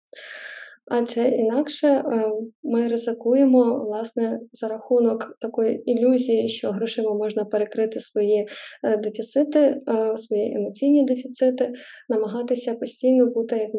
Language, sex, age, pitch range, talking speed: Ukrainian, female, 20-39, 220-255 Hz, 95 wpm